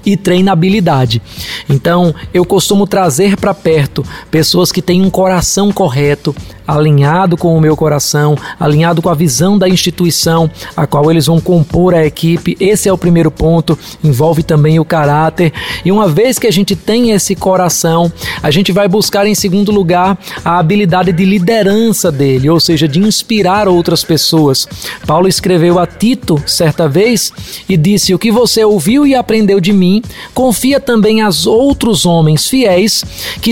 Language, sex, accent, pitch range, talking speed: Portuguese, male, Brazilian, 165-205 Hz, 165 wpm